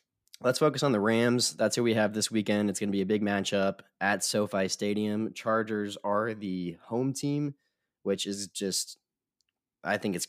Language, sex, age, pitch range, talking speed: English, male, 20-39, 90-110 Hz, 180 wpm